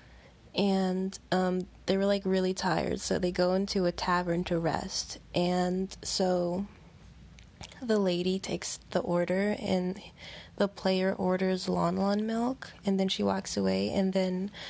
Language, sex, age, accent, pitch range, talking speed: English, female, 20-39, American, 180-200 Hz, 145 wpm